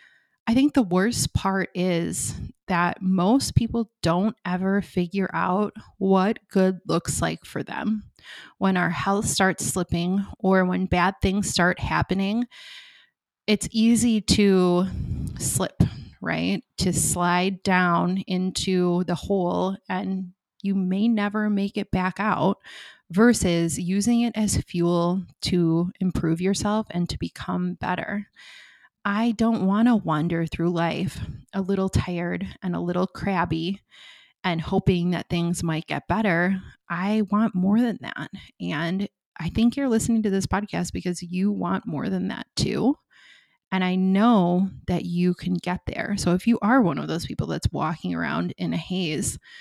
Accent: American